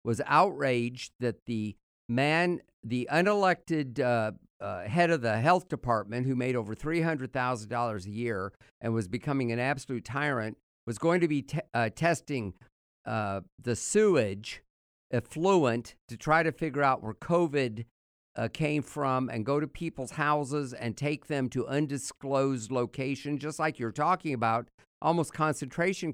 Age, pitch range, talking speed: 50-69, 120-160 Hz, 150 wpm